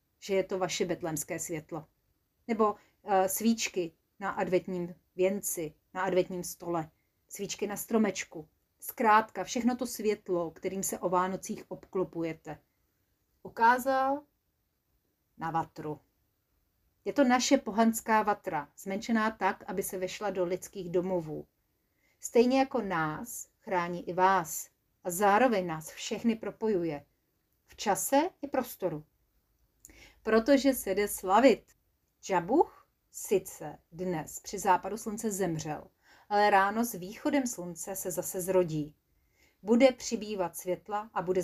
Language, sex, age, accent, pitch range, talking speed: Czech, female, 40-59, native, 175-225 Hz, 120 wpm